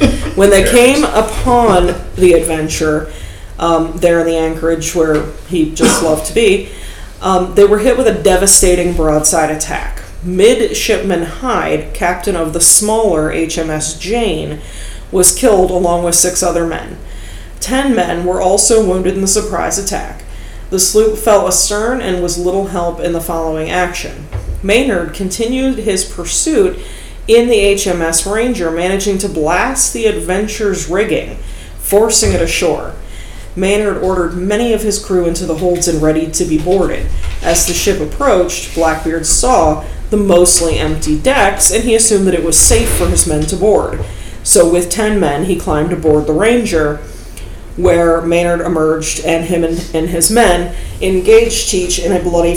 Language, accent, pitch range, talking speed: English, American, 165-205 Hz, 160 wpm